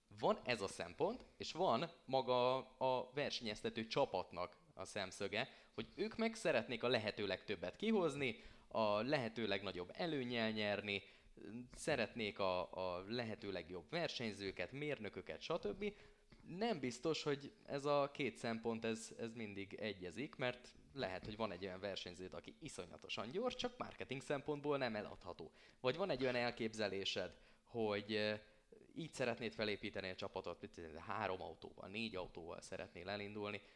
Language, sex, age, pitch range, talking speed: Hungarian, male, 20-39, 95-120 Hz, 135 wpm